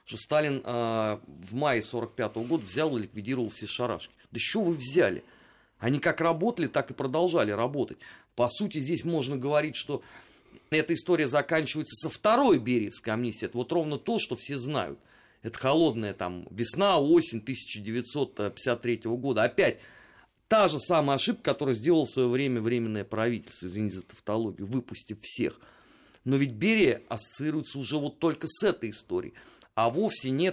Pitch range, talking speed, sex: 110-150 Hz, 160 wpm, male